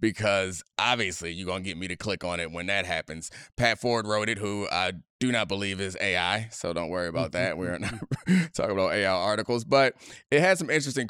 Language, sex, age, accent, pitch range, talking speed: English, male, 30-49, American, 105-130 Hz, 220 wpm